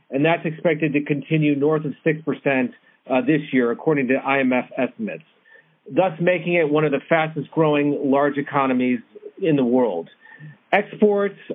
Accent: American